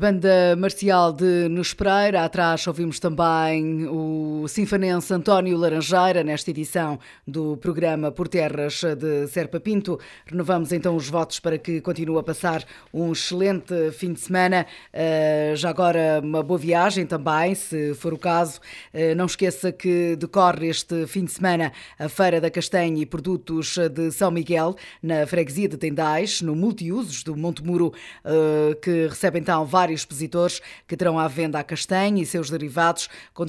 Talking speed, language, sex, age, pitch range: 150 wpm, Portuguese, female, 20-39, 160-180 Hz